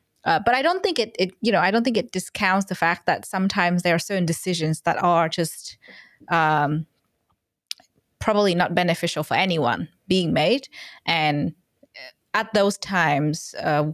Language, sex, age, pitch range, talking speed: English, female, 20-39, 165-195 Hz, 165 wpm